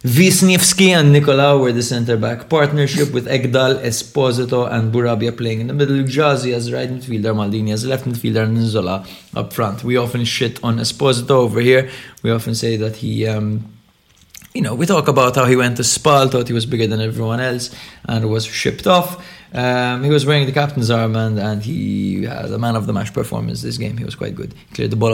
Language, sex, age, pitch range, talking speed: English, male, 20-39, 115-140 Hz, 210 wpm